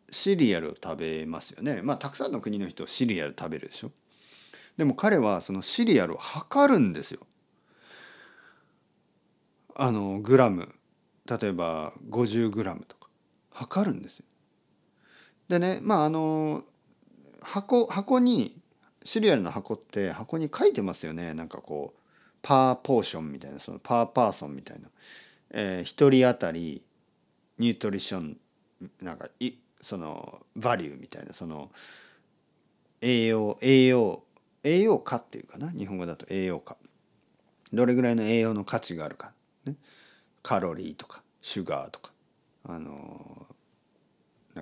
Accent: native